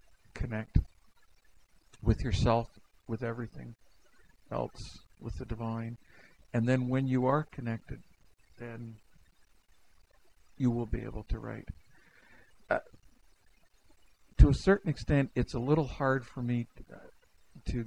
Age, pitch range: 60-79, 110-130 Hz